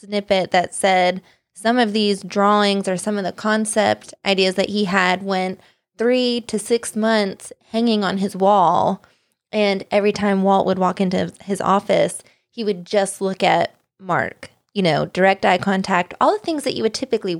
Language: English